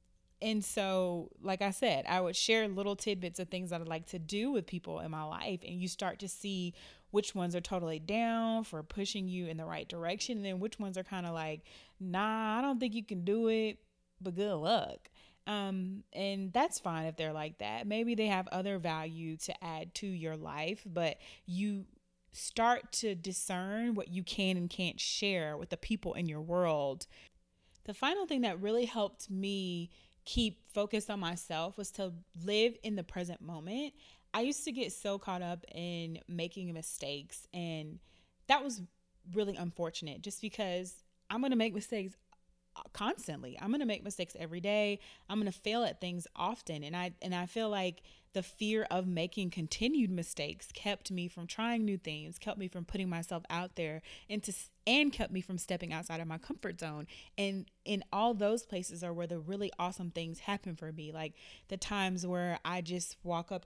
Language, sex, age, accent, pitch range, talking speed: English, female, 30-49, American, 170-210 Hz, 195 wpm